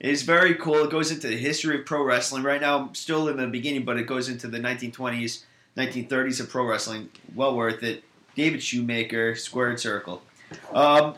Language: English